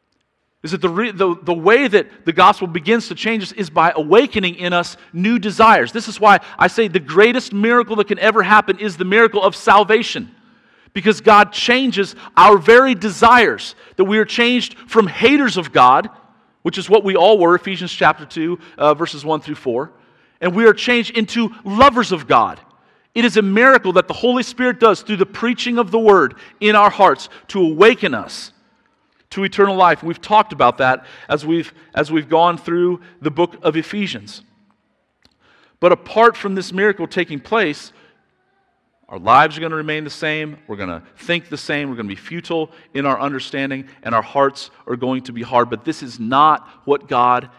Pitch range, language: 150-215 Hz, English